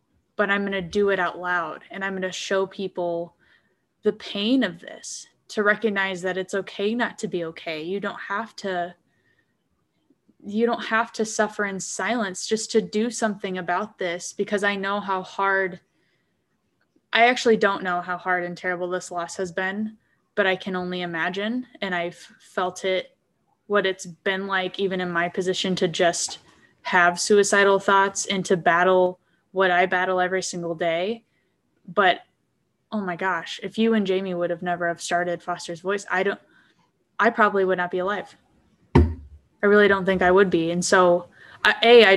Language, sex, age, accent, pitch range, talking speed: English, female, 10-29, American, 180-200 Hz, 180 wpm